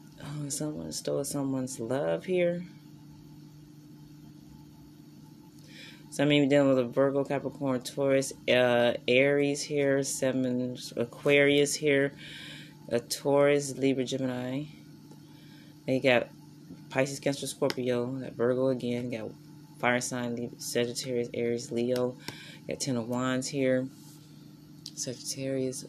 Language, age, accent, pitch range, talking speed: English, 20-39, American, 125-150 Hz, 110 wpm